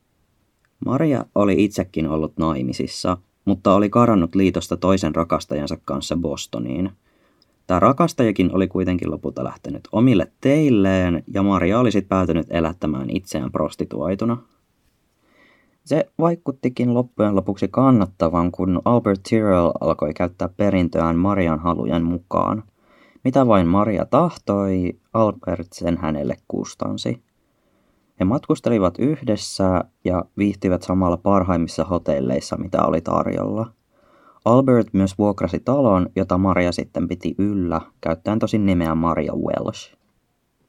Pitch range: 85-105 Hz